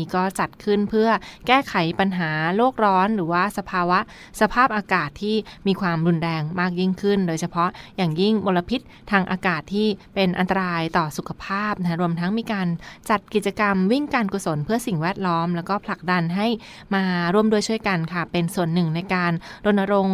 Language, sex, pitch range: Thai, female, 175-210 Hz